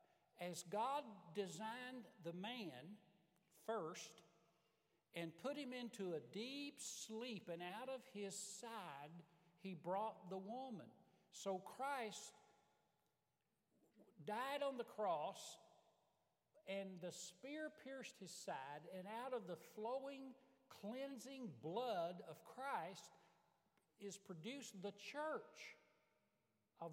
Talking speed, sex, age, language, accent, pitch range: 105 wpm, male, 60-79, English, American, 185-265 Hz